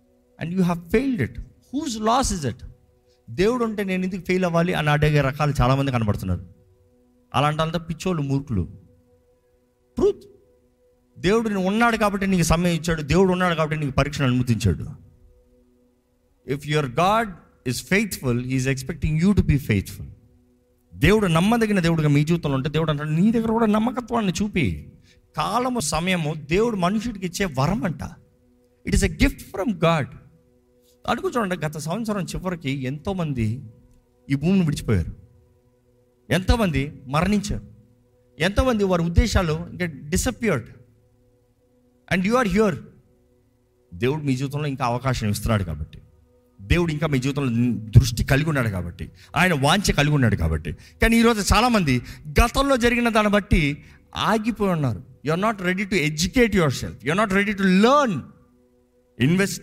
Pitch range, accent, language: 125-190 Hz, native, Telugu